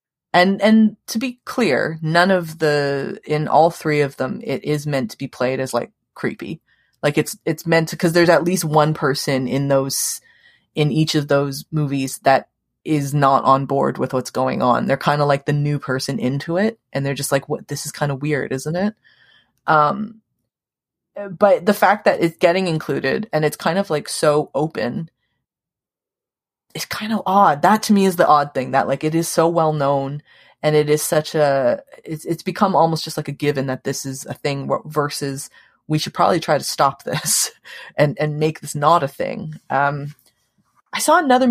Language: English